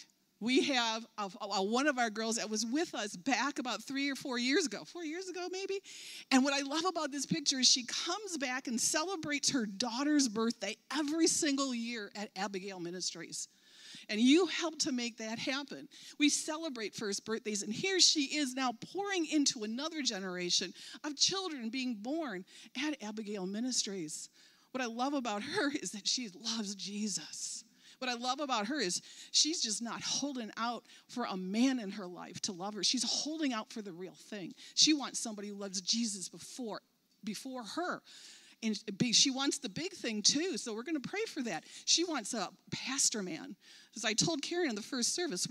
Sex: female